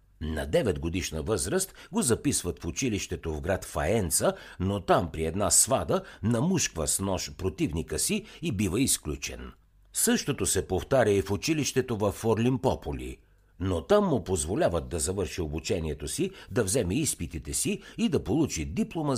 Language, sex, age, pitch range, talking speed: Bulgarian, male, 60-79, 80-125 Hz, 150 wpm